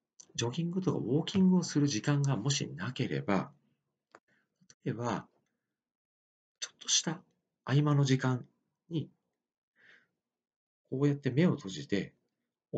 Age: 40-59